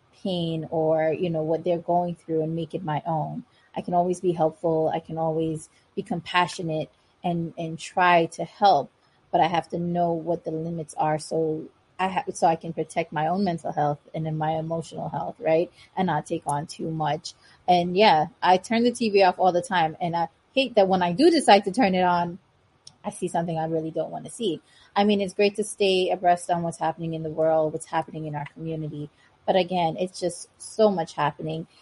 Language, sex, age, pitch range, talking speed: English, female, 20-39, 160-195 Hz, 220 wpm